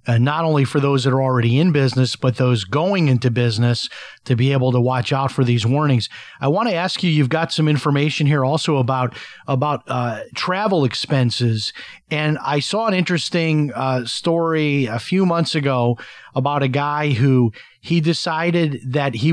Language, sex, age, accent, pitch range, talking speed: English, male, 40-59, American, 125-150 Hz, 185 wpm